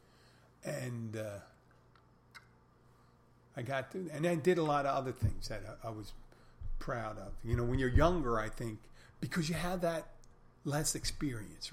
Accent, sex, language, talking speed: American, male, English, 155 wpm